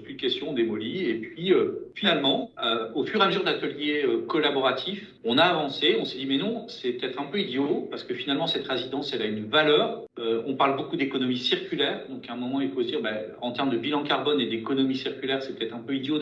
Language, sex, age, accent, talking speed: French, male, 40-59, French, 235 wpm